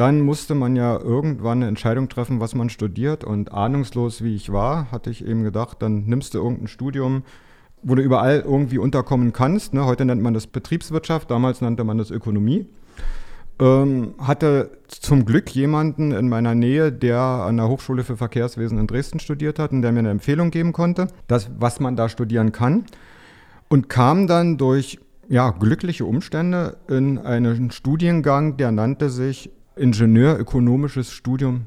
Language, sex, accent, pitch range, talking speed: German, male, German, 115-140 Hz, 160 wpm